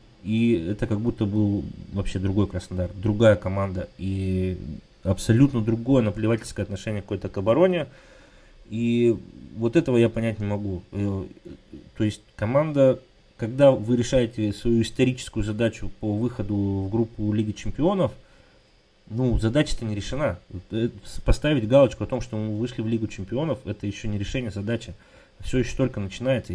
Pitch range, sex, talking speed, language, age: 100-125 Hz, male, 145 wpm, Russian, 20-39